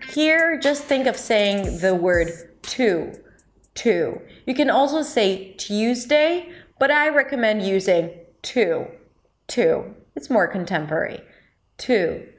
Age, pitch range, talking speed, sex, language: 30-49, 180-245 Hz, 115 wpm, female, English